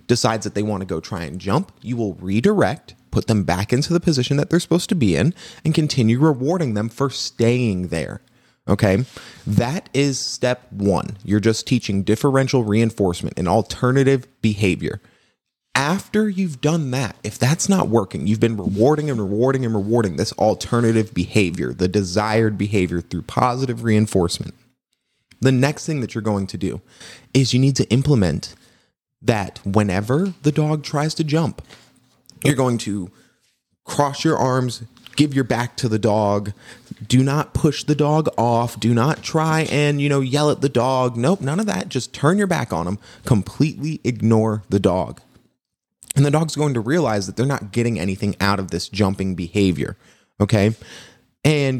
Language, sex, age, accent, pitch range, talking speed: English, male, 30-49, American, 105-140 Hz, 170 wpm